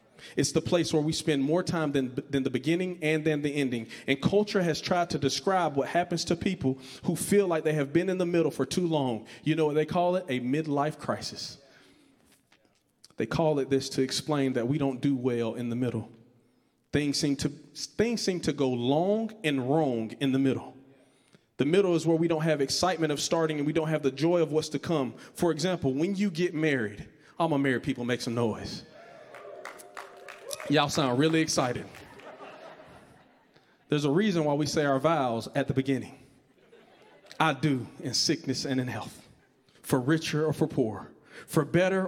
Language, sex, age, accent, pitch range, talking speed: English, male, 40-59, American, 135-165 Hz, 190 wpm